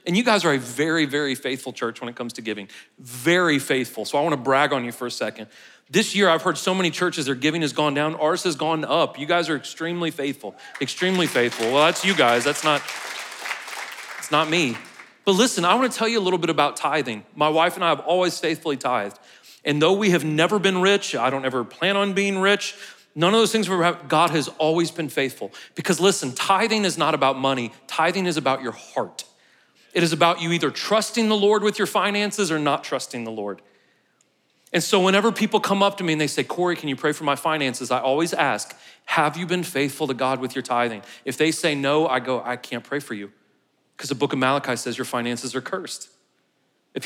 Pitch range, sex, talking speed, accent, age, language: 135-185 Hz, male, 235 wpm, American, 40-59, English